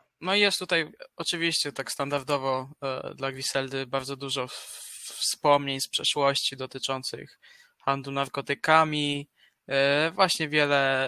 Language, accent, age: Polish, native, 20-39